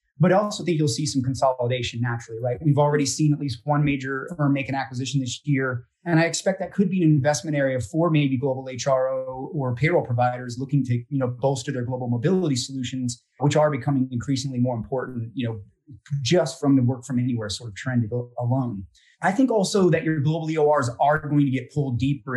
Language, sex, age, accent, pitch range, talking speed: English, male, 30-49, American, 125-150 Hz, 210 wpm